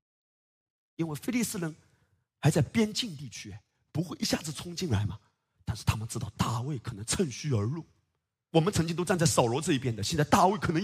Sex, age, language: male, 30-49, Chinese